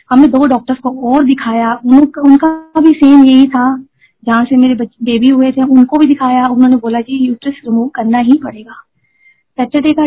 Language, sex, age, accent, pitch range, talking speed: Hindi, female, 20-39, native, 240-280 Hz, 185 wpm